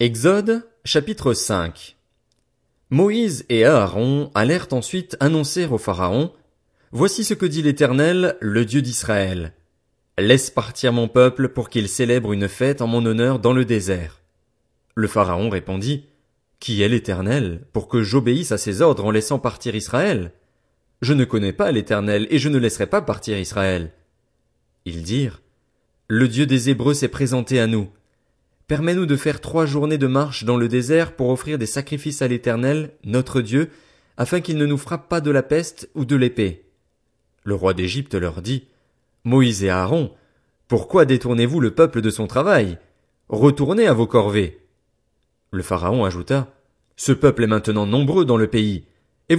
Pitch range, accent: 105-145 Hz, French